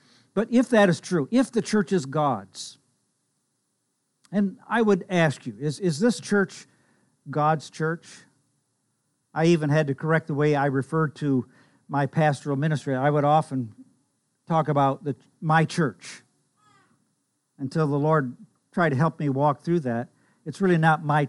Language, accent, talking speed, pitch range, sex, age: English, American, 160 wpm, 140-170 Hz, male, 50-69